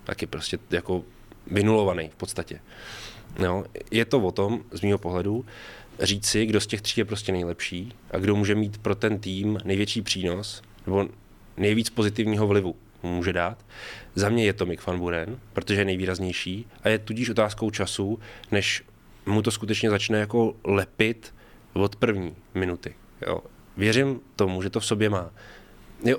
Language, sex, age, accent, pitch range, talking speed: Czech, male, 20-39, native, 95-115 Hz, 165 wpm